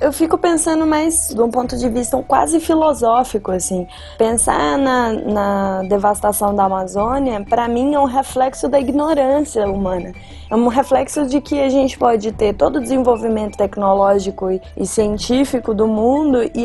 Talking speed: 165 wpm